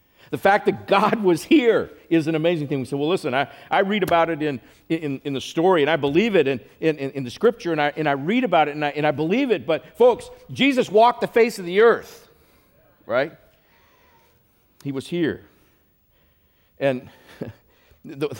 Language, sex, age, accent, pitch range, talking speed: English, male, 50-69, American, 90-150 Hz, 200 wpm